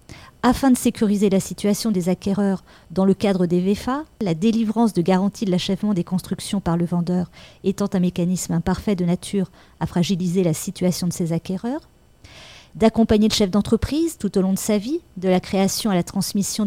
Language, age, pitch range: French, 40-59, 180-220 Hz